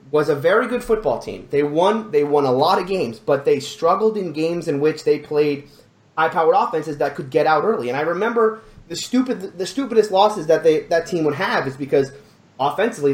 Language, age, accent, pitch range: English, 30-49, American, 150-215 Hz